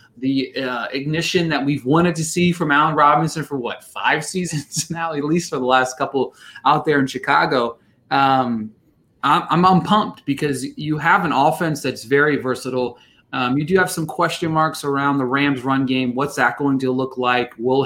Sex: male